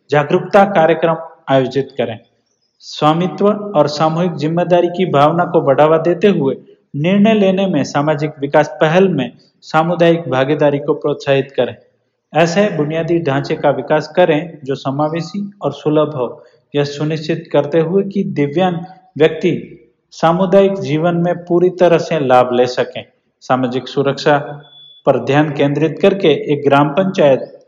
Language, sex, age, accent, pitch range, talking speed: Hindi, male, 50-69, native, 145-180 Hz, 95 wpm